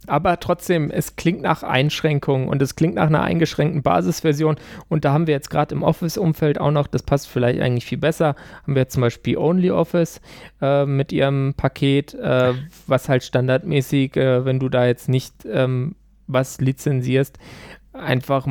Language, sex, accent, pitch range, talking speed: German, male, German, 120-145 Hz, 170 wpm